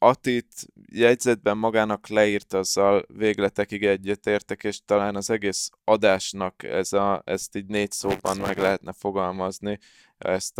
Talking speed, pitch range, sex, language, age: 125 wpm, 95-110 Hz, male, Hungarian, 20-39